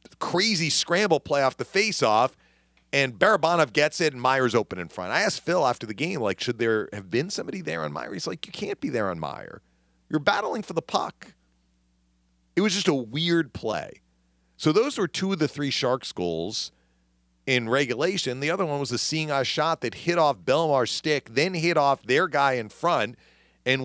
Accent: American